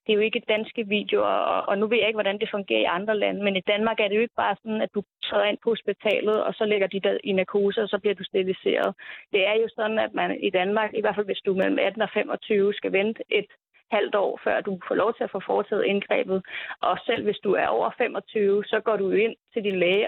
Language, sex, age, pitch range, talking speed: Danish, female, 30-49, 200-225 Hz, 270 wpm